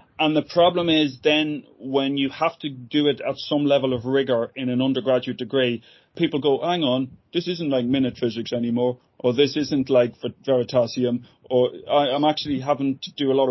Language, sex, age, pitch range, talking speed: English, male, 30-49, 125-150 Hz, 190 wpm